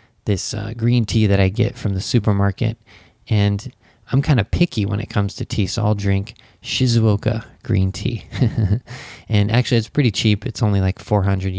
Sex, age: male, 20-39